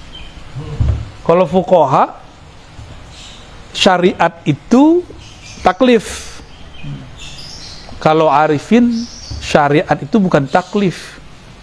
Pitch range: 125-185 Hz